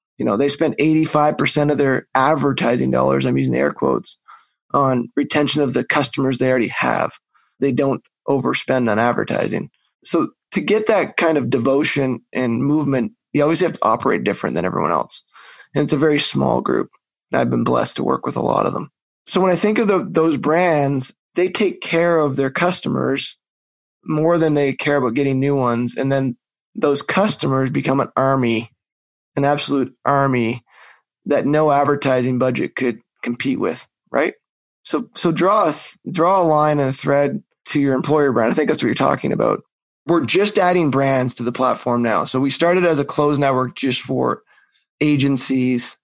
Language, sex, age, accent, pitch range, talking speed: English, male, 20-39, American, 125-150 Hz, 180 wpm